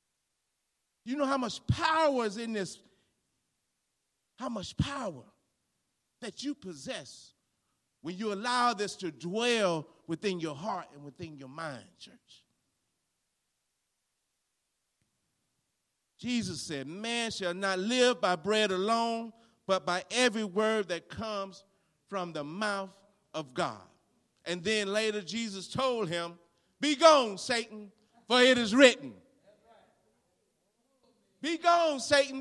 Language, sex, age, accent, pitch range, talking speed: English, male, 40-59, American, 180-250 Hz, 120 wpm